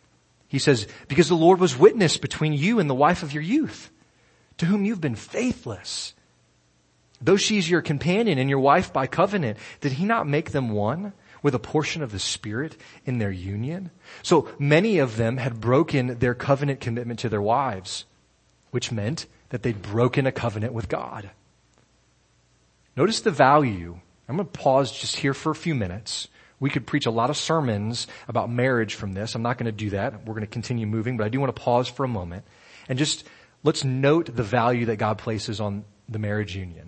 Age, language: 30-49, English